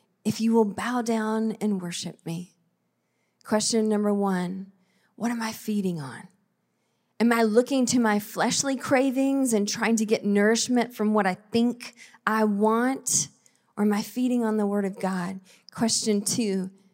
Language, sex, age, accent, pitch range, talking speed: English, female, 20-39, American, 210-265 Hz, 160 wpm